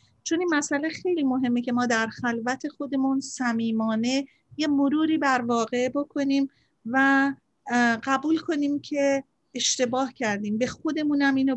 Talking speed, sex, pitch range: 130 wpm, female, 235-275 Hz